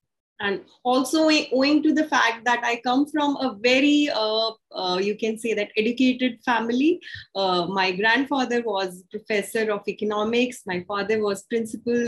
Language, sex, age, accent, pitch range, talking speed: English, female, 20-39, Indian, 200-255 Hz, 155 wpm